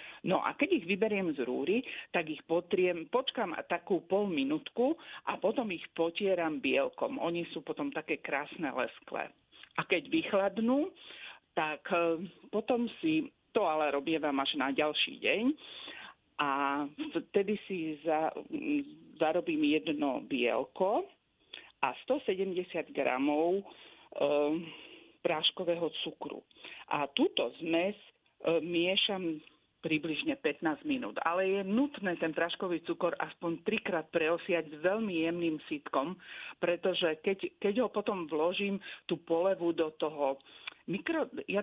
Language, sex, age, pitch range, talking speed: Slovak, female, 50-69, 160-215 Hz, 120 wpm